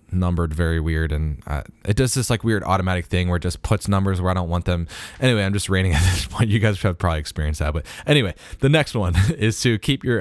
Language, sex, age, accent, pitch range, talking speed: English, male, 20-39, American, 85-100 Hz, 260 wpm